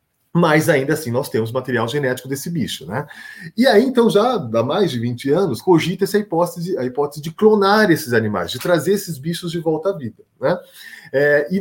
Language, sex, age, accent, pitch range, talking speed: Portuguese, male, 30-49, Brazilian, 130-175 Hz, 195 wpm